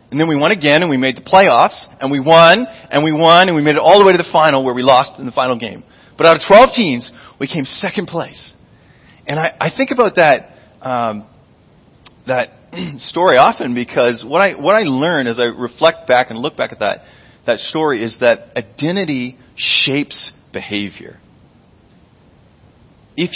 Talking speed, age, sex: 195 wpm, 40-59, male